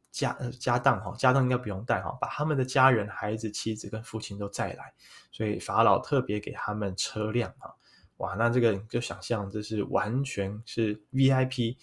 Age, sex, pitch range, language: 20-39, male, 105-140 Hz, Chinese